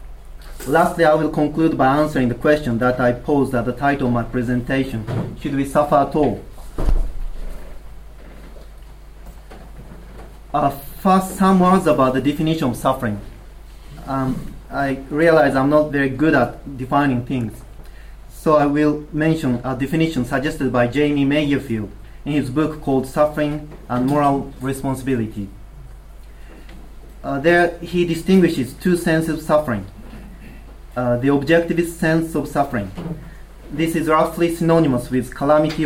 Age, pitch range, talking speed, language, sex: 40-59, 125-155 Hz, 130 wpm, English, male